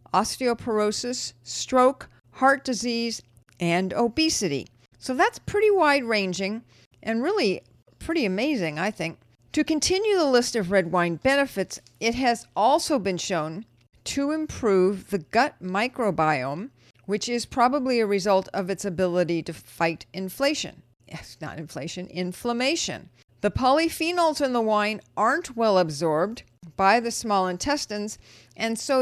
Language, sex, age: English, female, 50-69